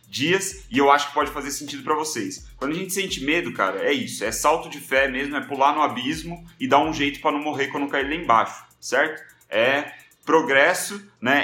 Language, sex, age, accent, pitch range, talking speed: Portuguese, male, 30-49, Brazilian, 130-150 Hz, 225 wpm